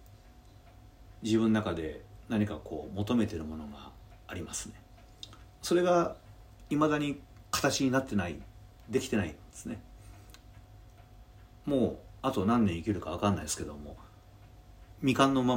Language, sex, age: Japanese, male, 40-59